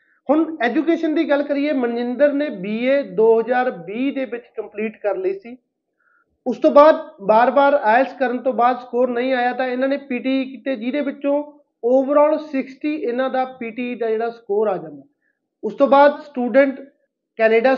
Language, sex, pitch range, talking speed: Punjabi, male, 220-265 Hz, 160 wpm